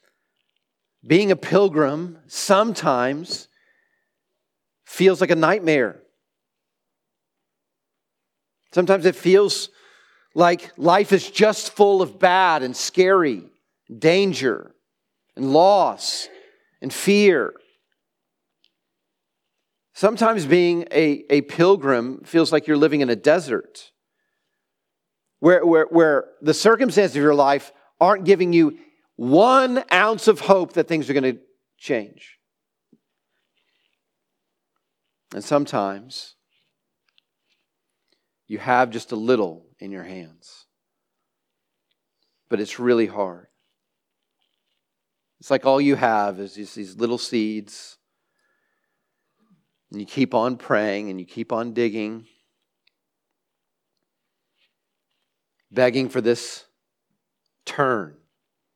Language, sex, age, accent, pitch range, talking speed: English, male, 40-59, American, 120-195 Hz, 95 wpm